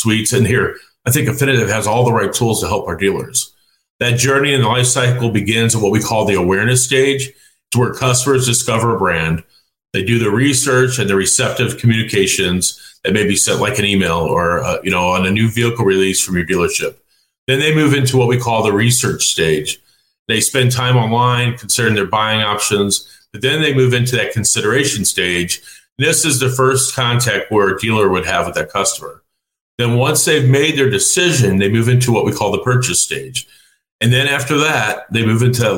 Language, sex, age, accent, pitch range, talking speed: English, male, 40-59, American, 105-130 Hz, 210 wpm